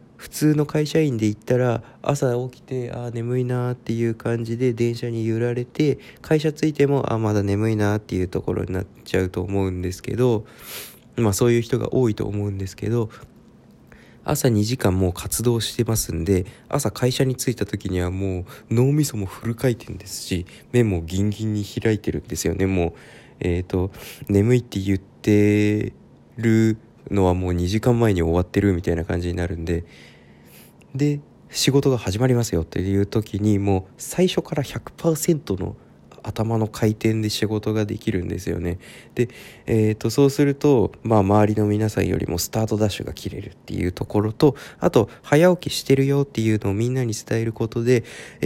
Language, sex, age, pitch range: Japanese, male, 20-39, 100-125 Hz